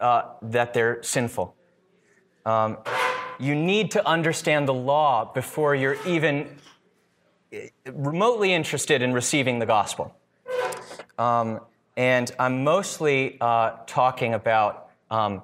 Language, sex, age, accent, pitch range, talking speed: English, male, 30-49, American, 110-150 Hz, 110 wpm